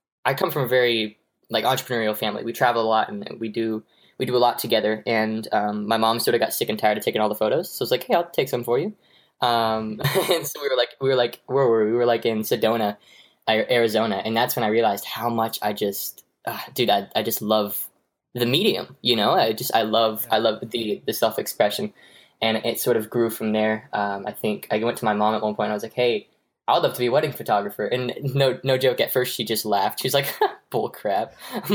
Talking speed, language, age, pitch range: 255 wpm, English, 10-29, 110-150 Hz